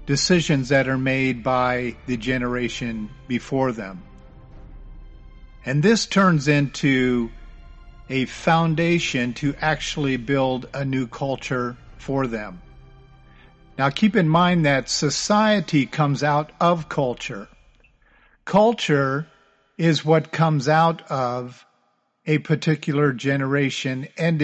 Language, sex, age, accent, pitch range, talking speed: English, male, 50-69, American, 130-165 Hz, 105 wpm